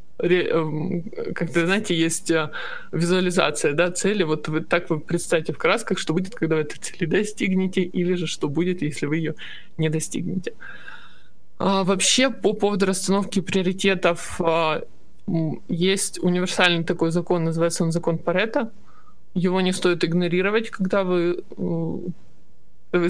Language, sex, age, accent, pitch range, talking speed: Russian, male, 20-39, native, 165-190 Hz, 125 wpm